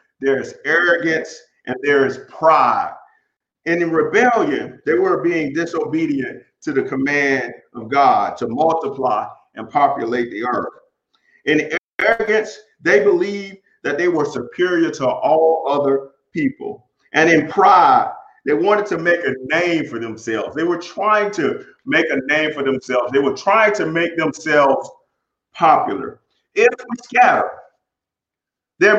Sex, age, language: male, 40-59, English